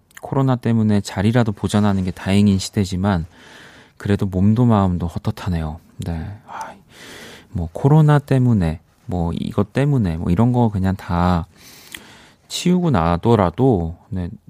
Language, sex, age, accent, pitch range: Korean, male, 30-49, native, 90-120 Hz